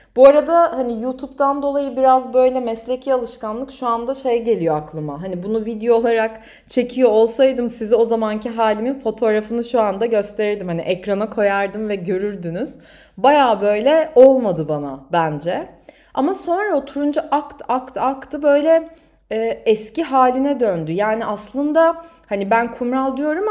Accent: native